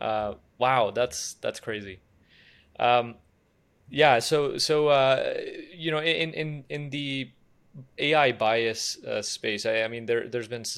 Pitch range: 105-125 Hz